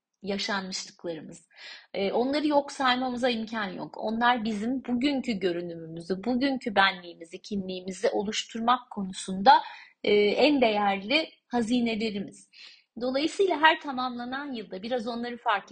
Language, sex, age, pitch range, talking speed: Turkish, female, 30-49, 195-270 Hz, 95 wpm